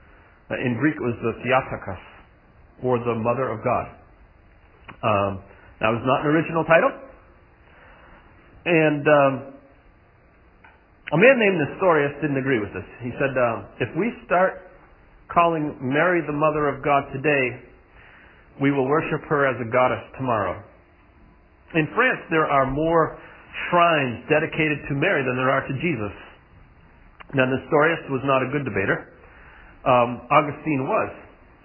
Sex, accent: male, American